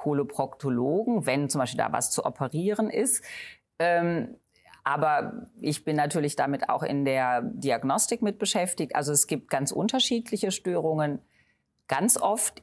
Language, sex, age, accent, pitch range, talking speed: German, female, 40-59, German, 140-190 Hz, 135 wpm